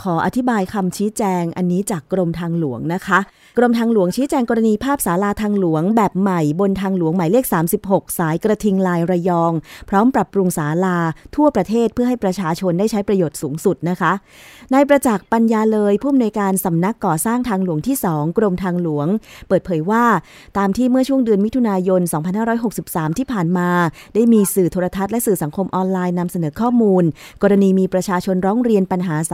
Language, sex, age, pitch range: Thai, female, 20-39, 175-220 Hz